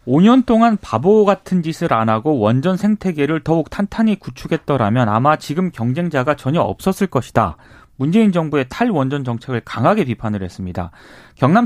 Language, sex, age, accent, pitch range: Korean, male, 30-49, native, 120-200 Hz